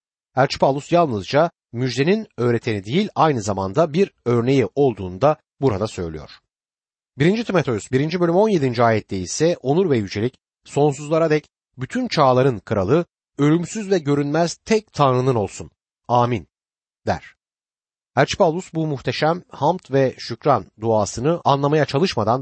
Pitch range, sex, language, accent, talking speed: 115-175 Hz, male, Turkish, native, 120 wpm